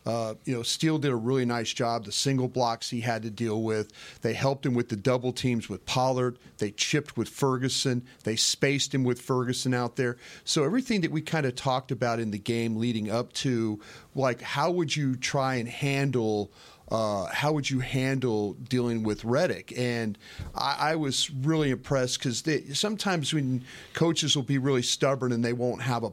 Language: English